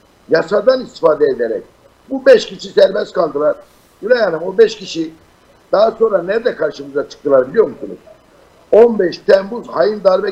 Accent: native